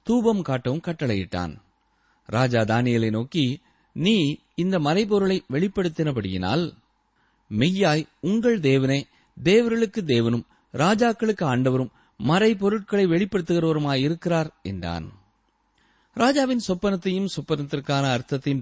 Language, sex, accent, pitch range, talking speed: Tamil, male, native, 130-195 Hz, 40 wpm